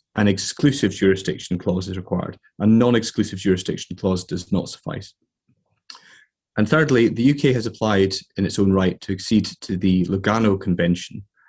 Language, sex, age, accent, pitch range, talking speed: English, male, 30-49, British, 95-115 Hz, 150 wpm